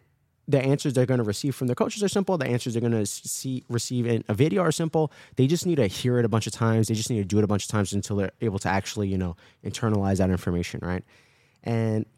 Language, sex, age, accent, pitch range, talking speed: English, male, 20-39, American, 105-130 Hz, 270 wpm